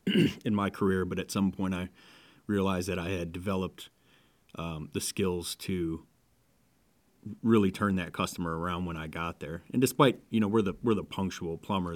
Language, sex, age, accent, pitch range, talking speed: English, male, 30-49, American, 85-95 Hz, 180 wpm